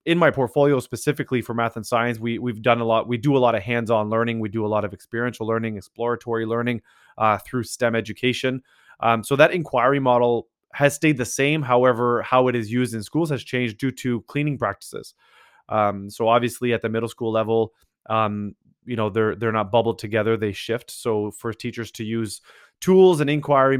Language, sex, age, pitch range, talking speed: English, male, 20-39, 110-130 Hz, 205 wpm